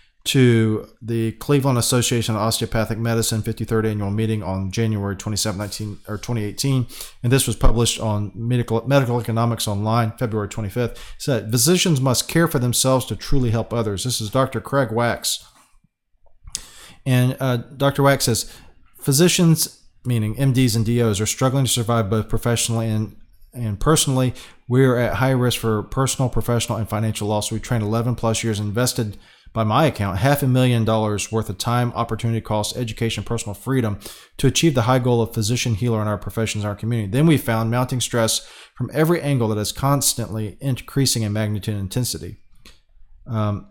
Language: English